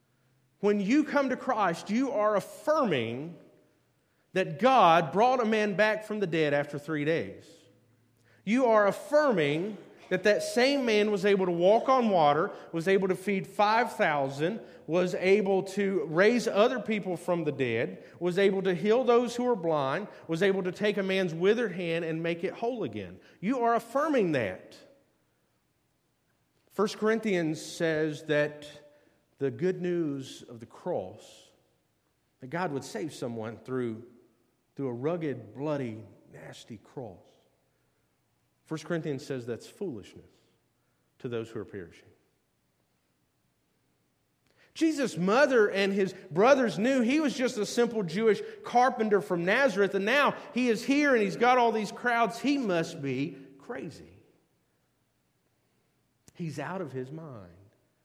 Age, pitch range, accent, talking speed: 40-59, 150-225 Hz, American, 145 wpm